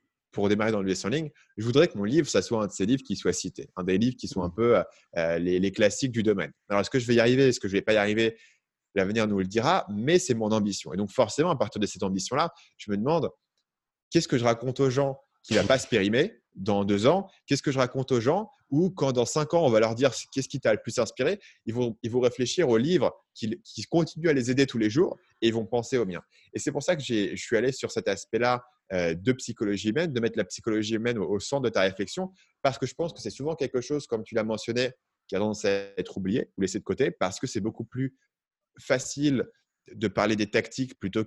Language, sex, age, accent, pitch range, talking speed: French, male, 20-39, French, 100-125 Hz, 265 wpm